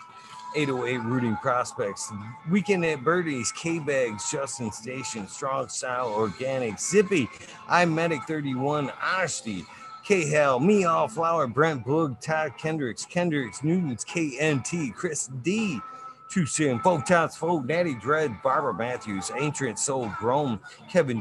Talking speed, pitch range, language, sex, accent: 135 wpm, 130-185 Hz, English, male, American